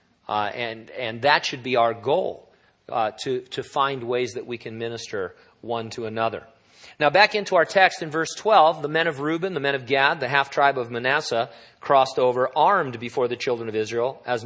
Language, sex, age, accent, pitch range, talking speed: English, male, 40-59, American, 125-160 Hz, 210 wpm